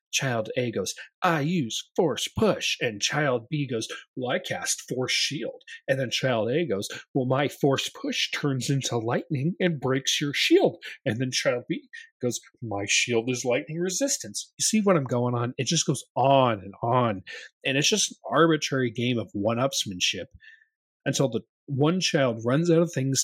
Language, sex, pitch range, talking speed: English, male, 115-155 Hz, 180 wpm